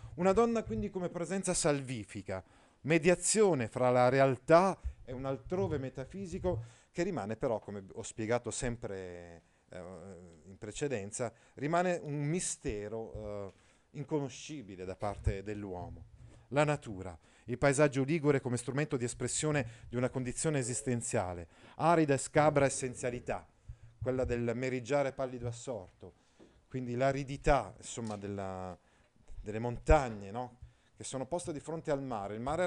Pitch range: 110-140 Hz